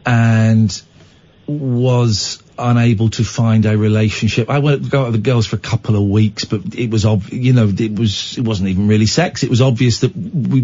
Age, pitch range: 40-59, 115-155 Hz